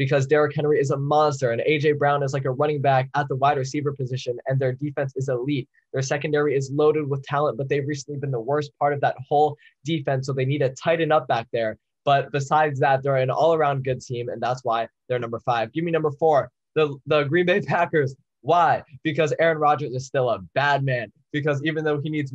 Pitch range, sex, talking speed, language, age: 135-155 Hz, male, 230 wpm, English, 10-29